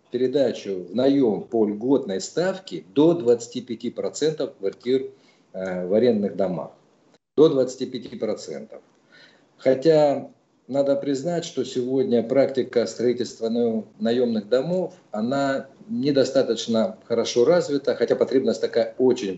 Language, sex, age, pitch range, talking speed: Russian, male, 50-69, 110-155 Hz, 95 wpm